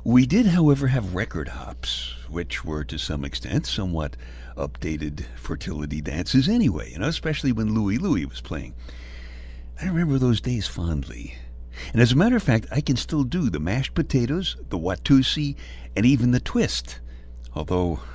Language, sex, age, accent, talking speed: English, male, 60-79, American, 160 wpm